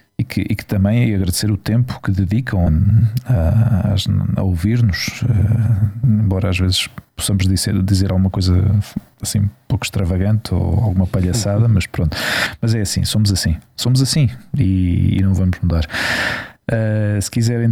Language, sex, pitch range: Portuguese, male, 90-110 Hz